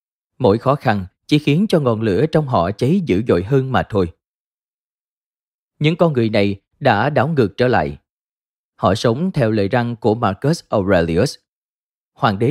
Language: Vietnamese